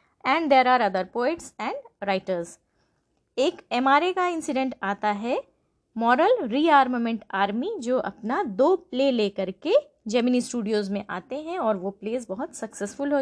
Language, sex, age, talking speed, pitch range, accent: English, female, 20-39, 150 wpm, 215-305 Hz, Indian